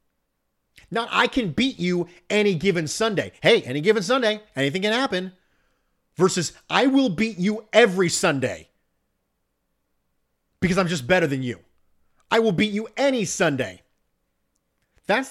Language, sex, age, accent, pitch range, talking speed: English, male, 40-59, American, 135-200 Hz, 135 wpm